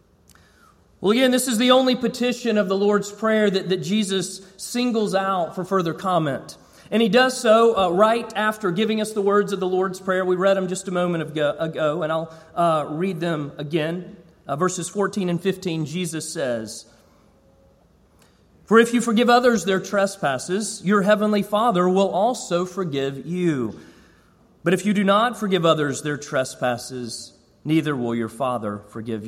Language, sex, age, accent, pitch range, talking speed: English, male, 40-59, American, 165-220 Hz, 170 wpm